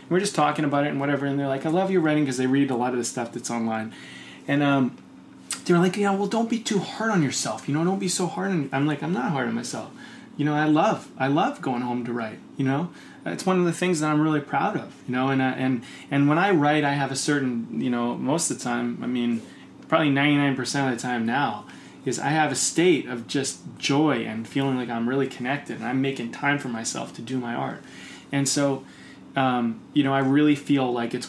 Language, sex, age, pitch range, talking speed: English, male, 20-39, 130-160 Hz, 255 wpm